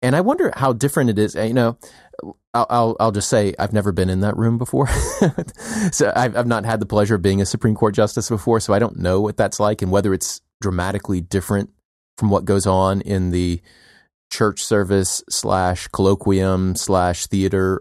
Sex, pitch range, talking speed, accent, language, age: male, 95-120 Hz, 190 wpm, American, English, 30-49